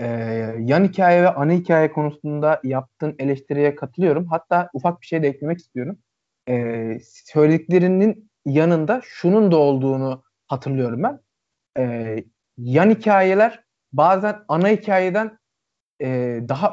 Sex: male